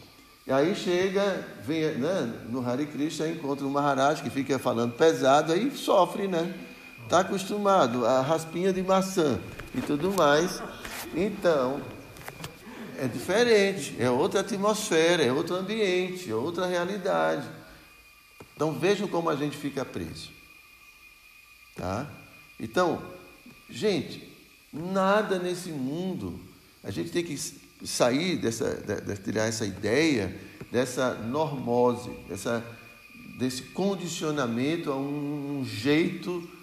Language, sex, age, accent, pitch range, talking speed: Portuguese, male, 60-79, Brazilian, 120-175 Hz, 120 wpm